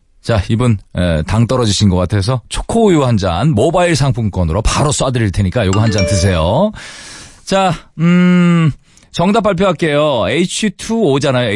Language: Korean